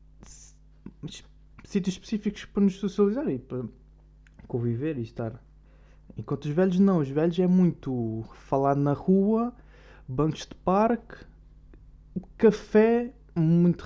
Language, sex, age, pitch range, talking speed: Portuguese, male, 20-39, 125-185 Hz, 115 wpm